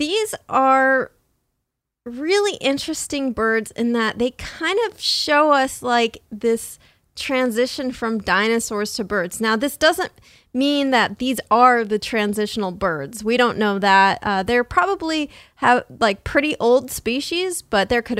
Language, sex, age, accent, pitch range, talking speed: English, female, 20-39, American, 215-280 Hz, 145 wpm